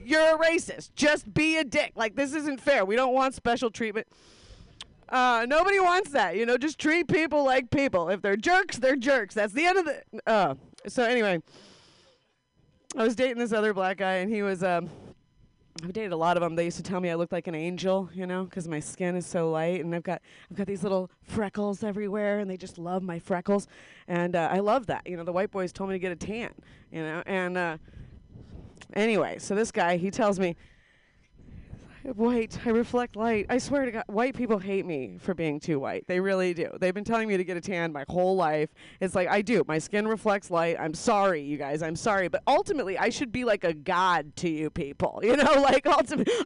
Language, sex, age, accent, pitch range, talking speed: English, female, 30-49, American, 175-245 Hz, 225 wpm